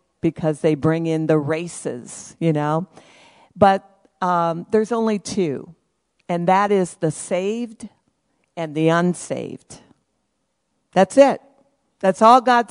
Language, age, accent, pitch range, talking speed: English, 50-69, American, 185-235 Hz, 125 wpm